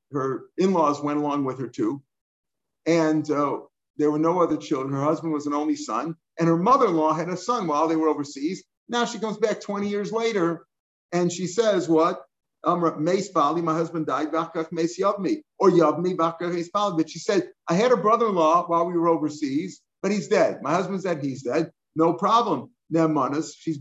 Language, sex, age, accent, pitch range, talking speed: English, male, 50-69, American, 150-185 Hz, 170 wpm